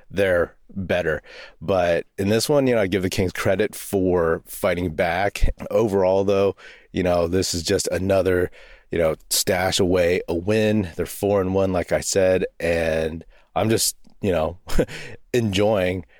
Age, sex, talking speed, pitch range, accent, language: 30-49, male, 160 wpm, 90-105 Hz, American, English